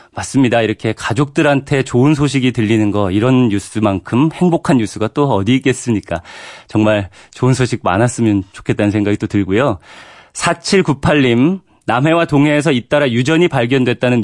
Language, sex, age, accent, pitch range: Korean, male, 30-49, native, 115-155 Hz